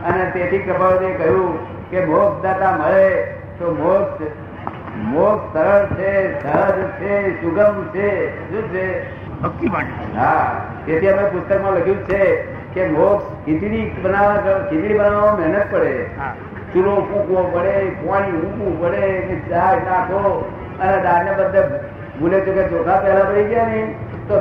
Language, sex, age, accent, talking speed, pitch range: Gujarati, male, 60-79, native, 85 wpm, 175-200 Hz